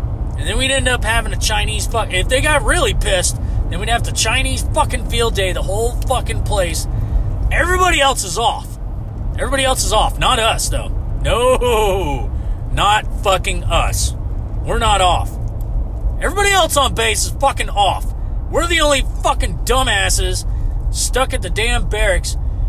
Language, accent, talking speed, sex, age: English, American, 160 wpm, male, 30-49